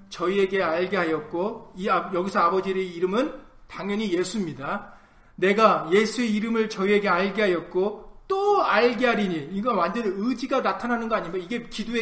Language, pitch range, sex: Korean, 190-285 Hz, male